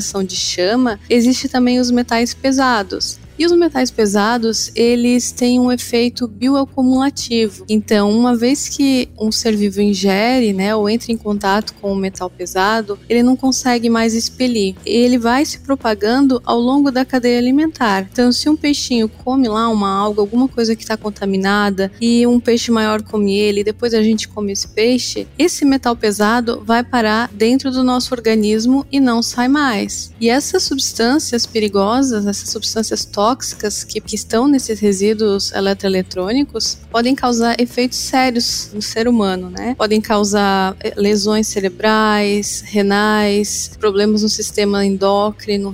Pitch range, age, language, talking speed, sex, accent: 205-245 Hz, 20-39, Portuguese, 150 wpm, female, Brazilian